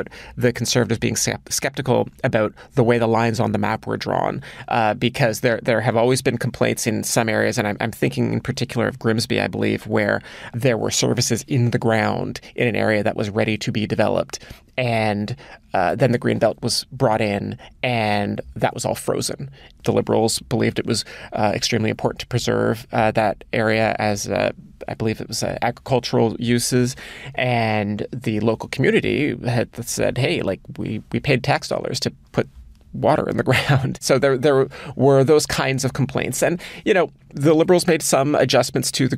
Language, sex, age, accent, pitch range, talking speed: English, male, 30-49, American, 110-130 Hz, 190 wpm